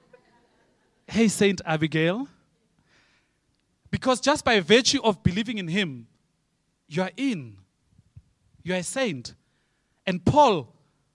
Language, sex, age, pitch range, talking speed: English, male, 30-49, 150-215 Hz, 110 wpm